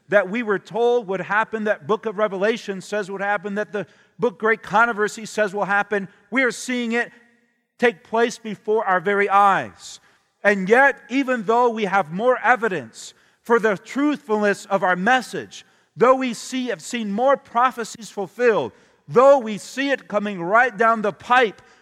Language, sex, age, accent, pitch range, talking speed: English, male, 40-59, American, 185-235 Hz, 170 wpm